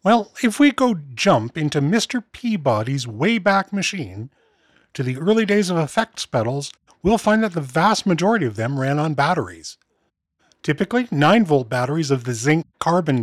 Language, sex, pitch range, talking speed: English, male, 135-190 Hz, 155 wpm